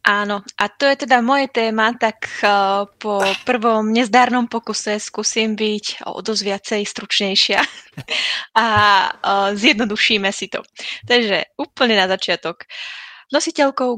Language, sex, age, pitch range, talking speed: Czech, female, 20-39, 180-220 Hz, 110 wpm